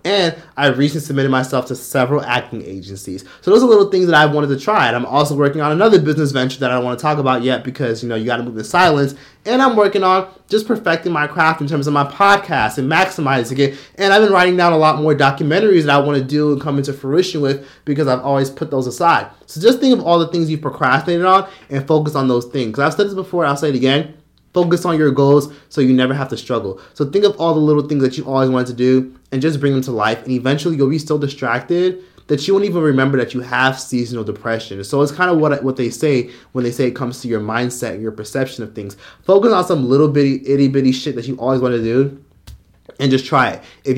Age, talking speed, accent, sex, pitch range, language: 30-49, 260 wpm, American, male, 130-165 Hz, English